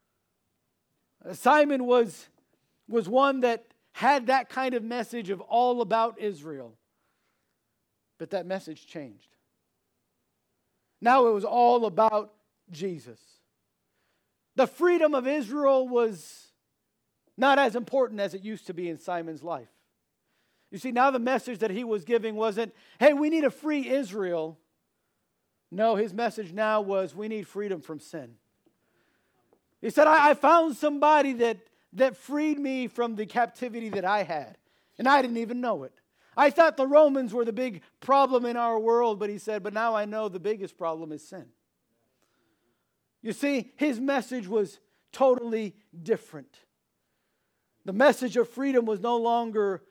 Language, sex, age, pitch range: English, male, 50-69, 200-255 Hz